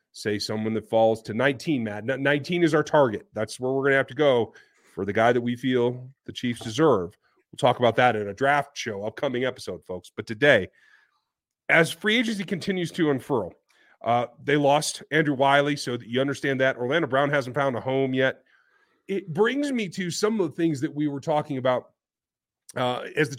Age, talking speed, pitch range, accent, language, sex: 40-59, 205 wpm, 130-175 Hz, American, English, male